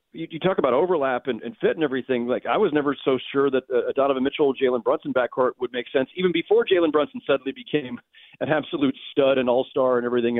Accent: American